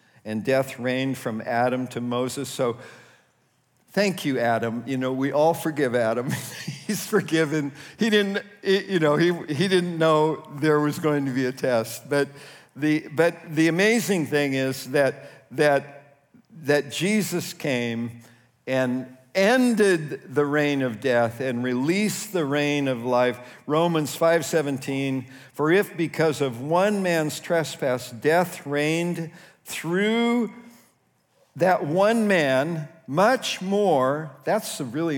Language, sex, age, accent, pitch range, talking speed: English, male, 50-69, American, 130-175 Hz, 135 wpm